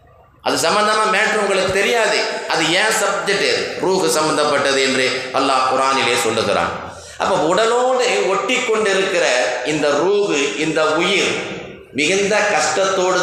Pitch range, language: 135-195 Hz, Tamil